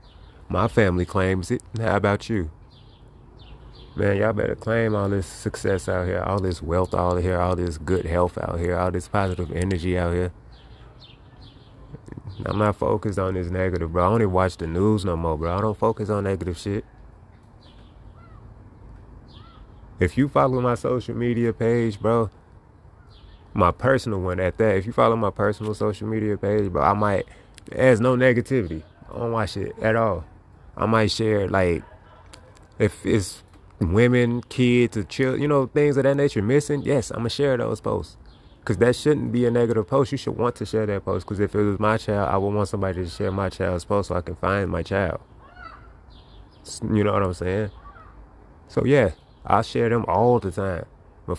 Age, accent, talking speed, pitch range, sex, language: 20-39, American, 185 wpm, 95-115 Hz, male, English